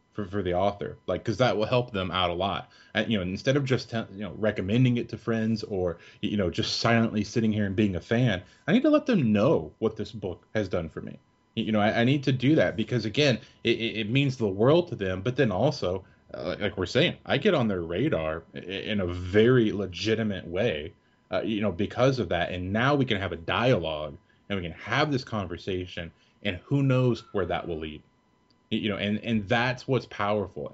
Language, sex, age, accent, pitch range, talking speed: English, male, 20-39, American, 100-125 Hz, 230 wpm